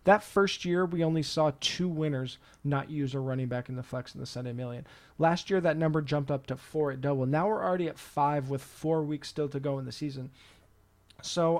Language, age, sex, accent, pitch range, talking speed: English, 20-39, male, American, 140-160 Hz, 235 wpm